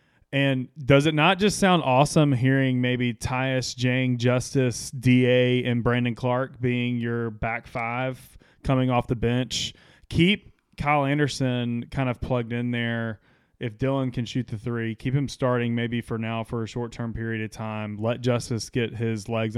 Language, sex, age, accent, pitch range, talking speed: English, male, 20-39, American, 115-130 Hz, 170 wpm